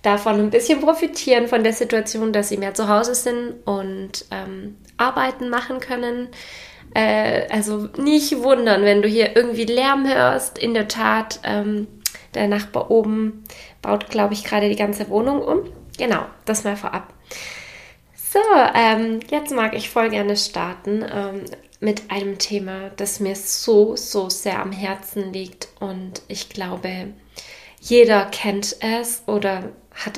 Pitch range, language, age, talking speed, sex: 195-225 Hz, German, 20-39, 150 wpm, female